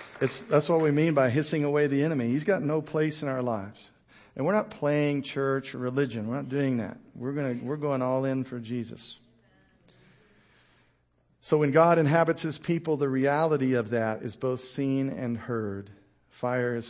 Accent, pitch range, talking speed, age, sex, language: American, 115-140 Hz, 190 wpm, 50-69, male, English